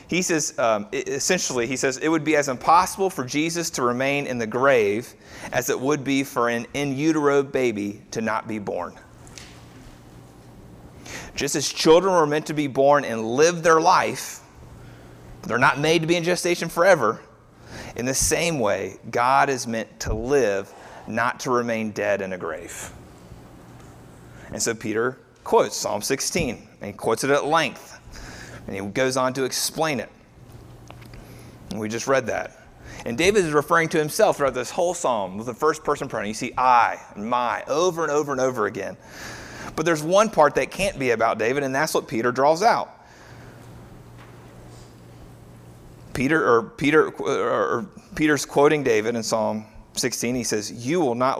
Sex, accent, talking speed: male, American, 170 wpm